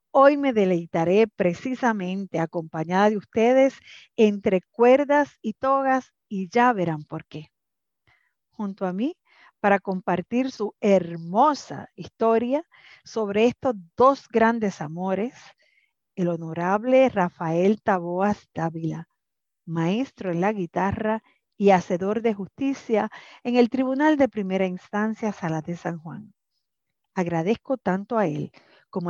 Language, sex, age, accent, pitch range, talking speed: Spanish, female, 40-59, American, 175-230 Hz, 120 wpm